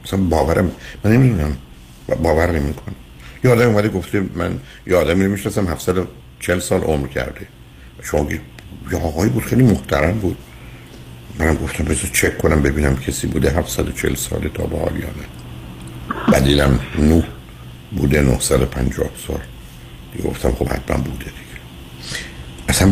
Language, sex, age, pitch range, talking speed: Persian, male, 60-79, 65-90 Hz, 135 wpm